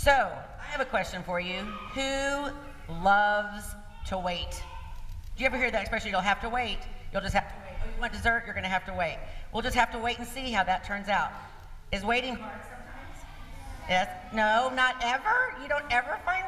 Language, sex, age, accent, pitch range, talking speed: English, female, 50-69, American, 165-220 Hz, 215 wpm